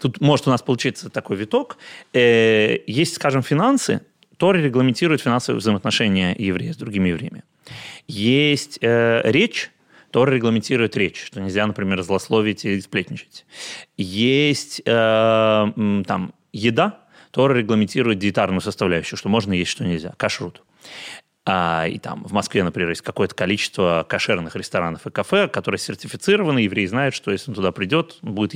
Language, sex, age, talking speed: Russian, male, 30-49, 145 wpm